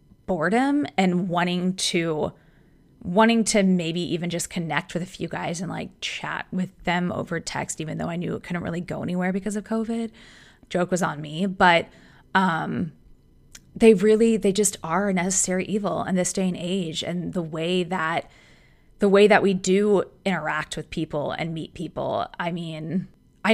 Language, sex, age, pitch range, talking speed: English, female, 20-39, 170-210 Hz, 180 wpm